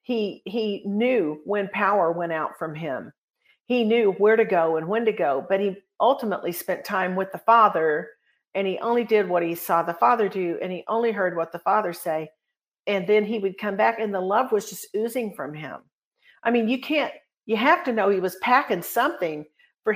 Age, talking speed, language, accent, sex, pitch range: 50-69, 215 wpm, English, American, female, 195-255 Hz